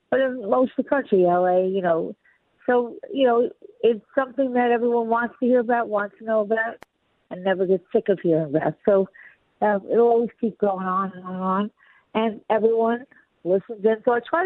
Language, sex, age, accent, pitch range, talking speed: English, female, 50-69, American, 190-235 Hz, 205 wpm